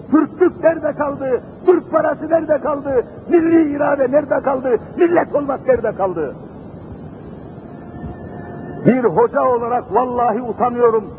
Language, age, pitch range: Turkish, 60-79, 225-270 Hz